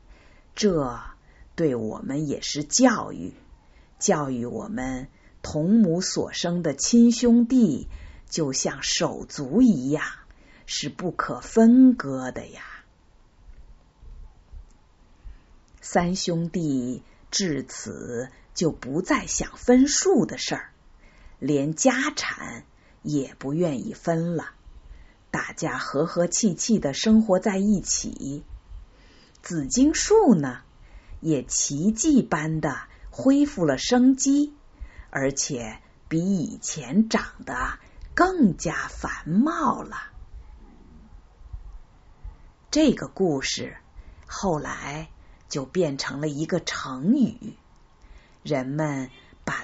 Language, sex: Chinese, female